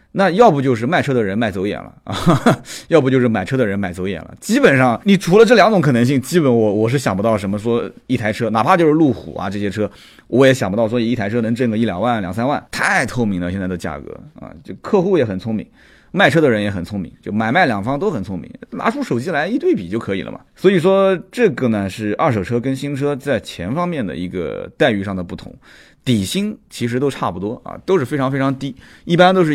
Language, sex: Chinese, male